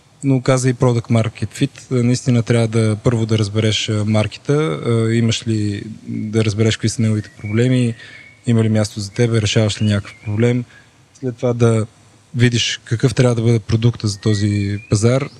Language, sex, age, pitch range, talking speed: Bulgarian, male, 20-39, 110-125 Hz, 165 wpm